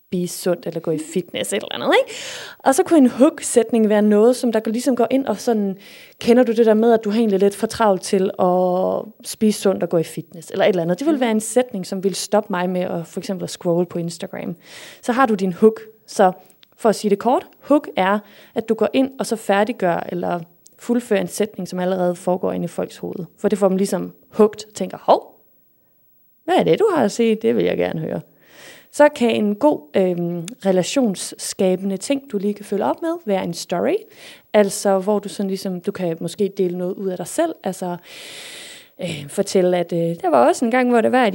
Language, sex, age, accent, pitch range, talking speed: Danish, female, 20-39, native, 185-240 Hz, 225 wpm